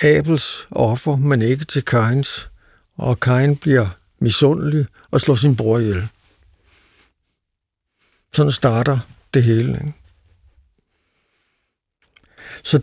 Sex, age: male, 60-79